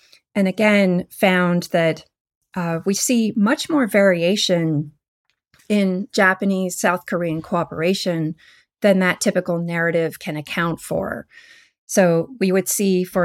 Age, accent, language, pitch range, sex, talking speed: 30-49, American, English, 170-200 Hz, female, 120 wpm